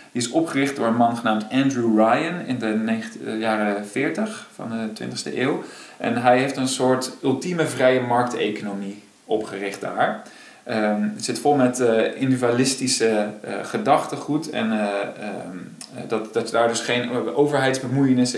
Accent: Dutch